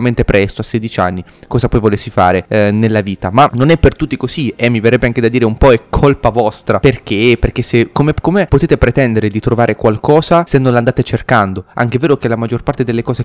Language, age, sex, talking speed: Italian, 20-39, male, 225 wpm